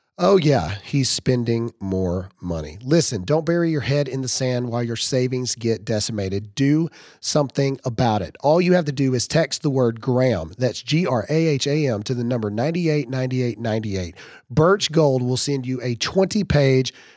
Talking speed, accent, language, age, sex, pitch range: 160 wpm, American, English, 40-59, male, 120-160 Hz